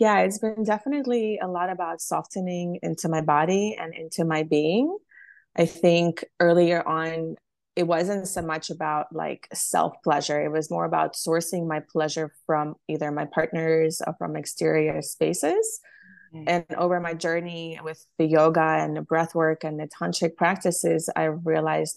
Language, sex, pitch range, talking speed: English, female, 160-180 Hz, 160 wpm